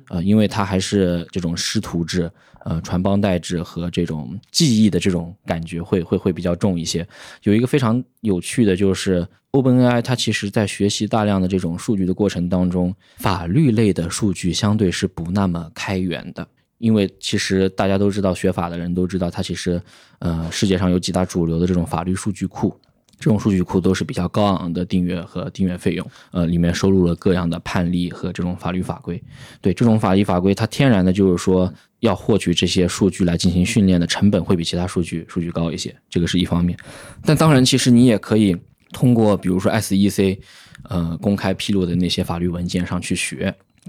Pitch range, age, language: 85-100 Hz, 20-39, Chinese